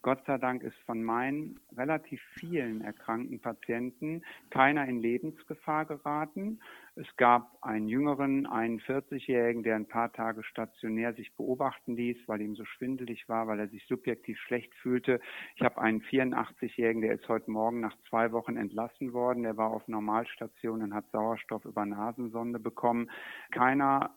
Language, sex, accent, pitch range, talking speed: German, male, German, 115-150 Hz, 155 wpm